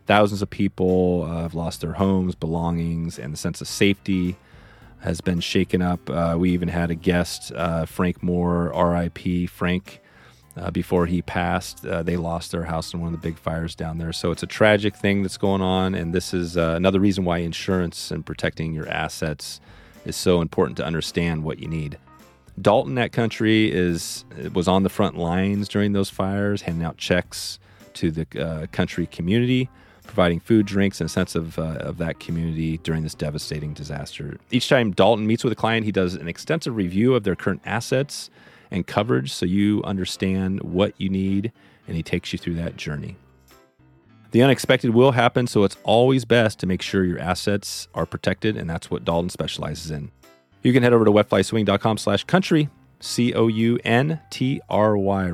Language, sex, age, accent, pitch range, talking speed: English, male, 30-49, American, 85-100 Hz, 180 wpm